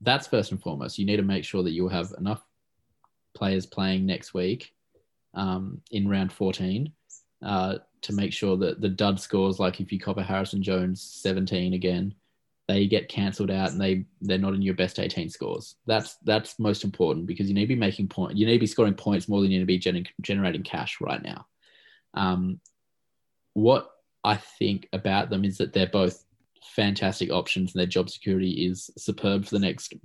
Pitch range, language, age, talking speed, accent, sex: 95-105 Hz, English, 20-39, 195 wpm, Australian, male